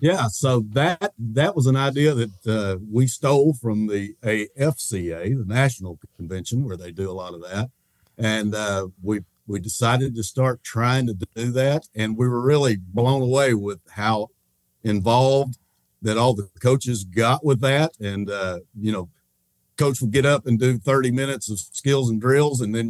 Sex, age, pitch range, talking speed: male, 50-69, 105-130 Hz, 180 wpm